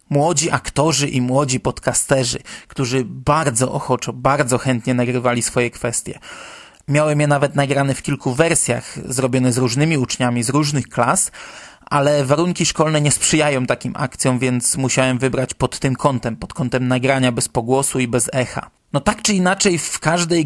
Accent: native